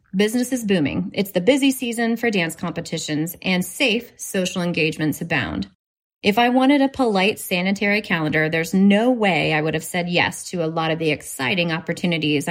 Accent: American